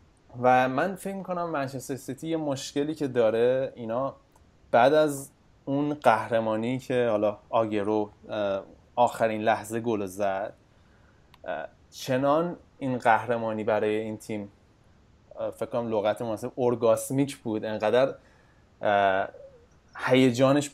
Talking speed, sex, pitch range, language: 105 wpm, male, 105-130 Hz, Persian